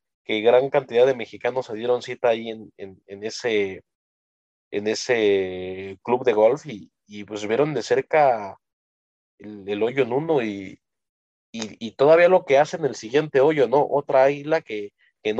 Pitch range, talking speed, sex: 100-140 Hz, 170 wpm, male